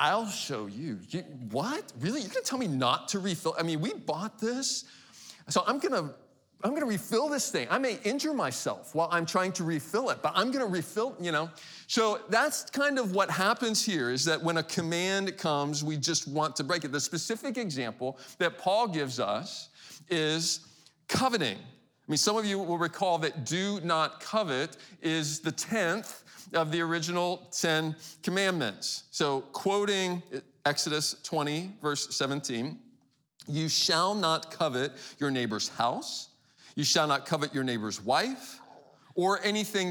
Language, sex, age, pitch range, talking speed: English, male, 40-59, 145-190 Hz, 165 wpm